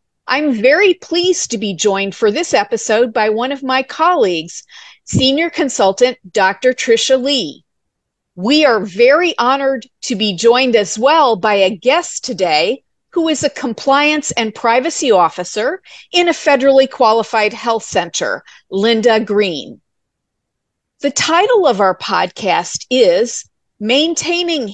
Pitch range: 210-295 Hz